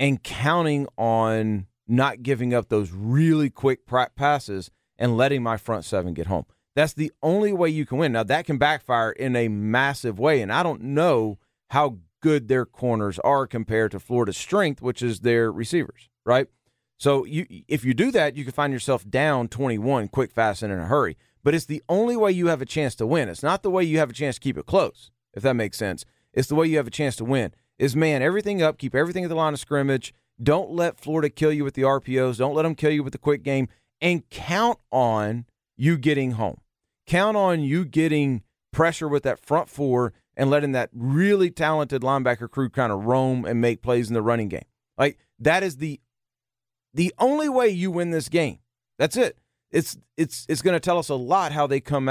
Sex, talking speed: male, 215 wpm